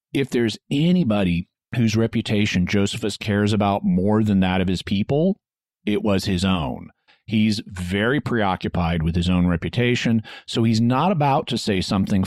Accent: American